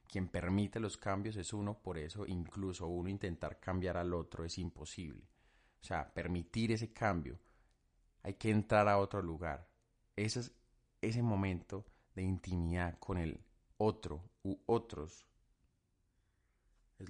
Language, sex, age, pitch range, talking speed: Spanish, male, 30-49, 75-95 Hz, 135 wpm